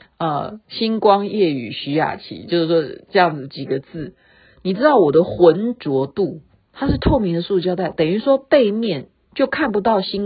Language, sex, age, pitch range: Chinese, female, 50-69, 170-280 Hz